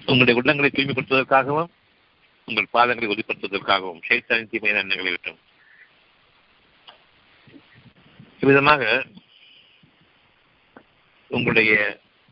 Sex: male